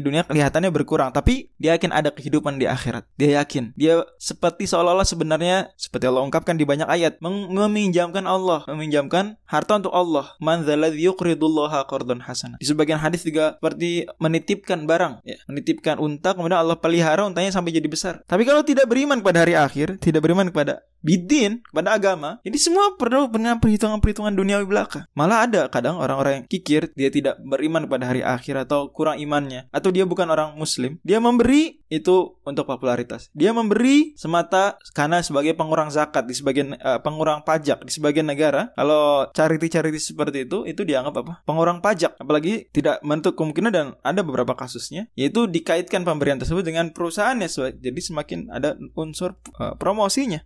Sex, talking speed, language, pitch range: male, 160 wpm, Indonesian, 145-185 Hz